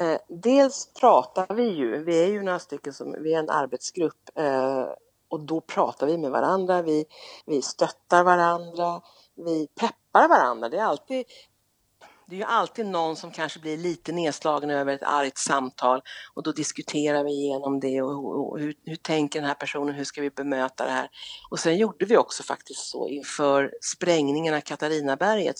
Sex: female